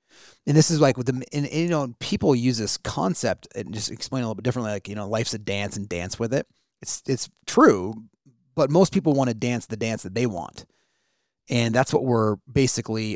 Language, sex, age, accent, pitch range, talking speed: English, male, 30-49, American, 110-135 Hz, 235 wpm